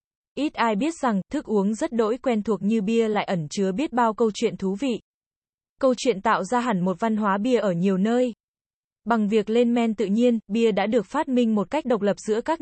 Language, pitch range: Vietnamese, 205-245 Hz